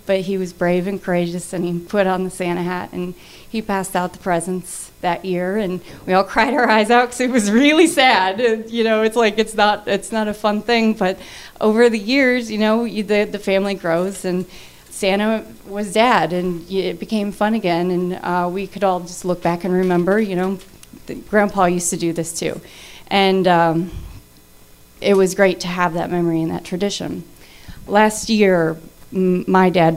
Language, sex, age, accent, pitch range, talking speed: English, female, 30-49, American, 180-210 Hz, 200 wpm